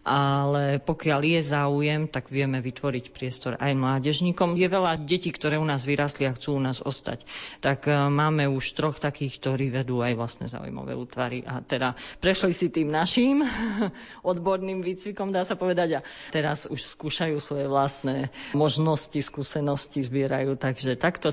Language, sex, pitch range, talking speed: Slovak, female, 135-155 Hz, 155 wpm